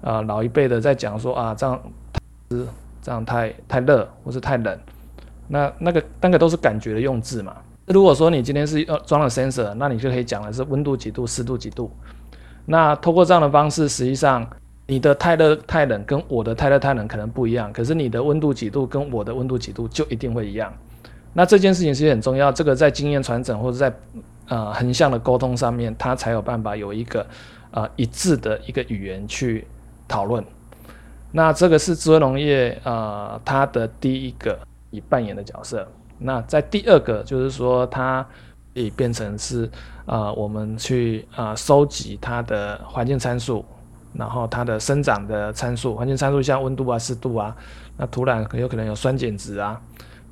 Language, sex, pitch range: Chinese, male, 110-135 Hz